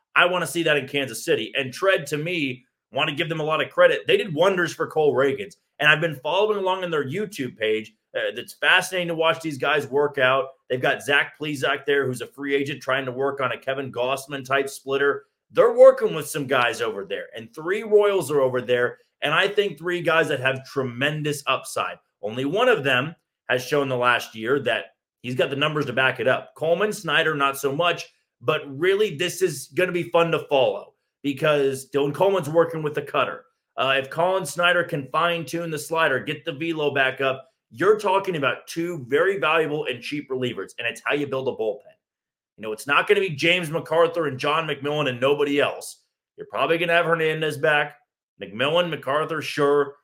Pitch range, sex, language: 140-175 Hz, male, English